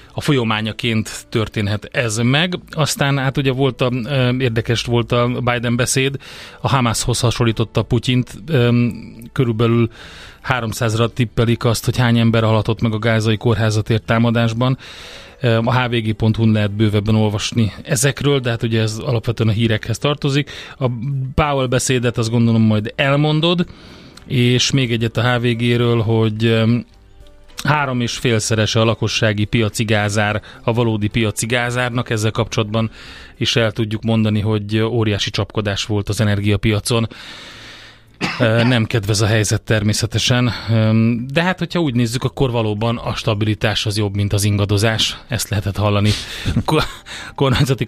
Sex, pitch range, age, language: male, 110-125 Hz, 30-49, Hungarian